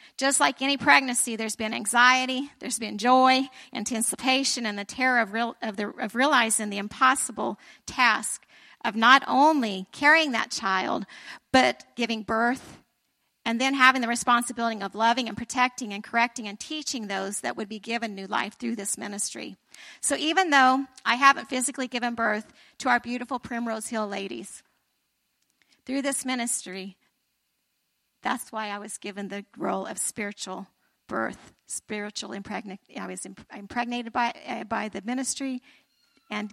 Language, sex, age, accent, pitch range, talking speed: English, female, 50-69, American, 210-255 Hz, 150 wpm